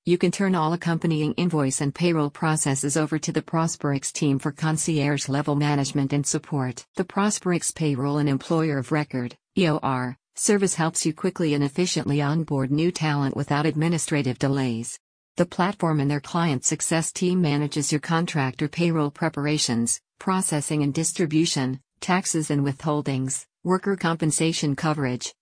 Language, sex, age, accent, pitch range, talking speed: English, female, 50-69, American, 145-165 Hz, 140 wpm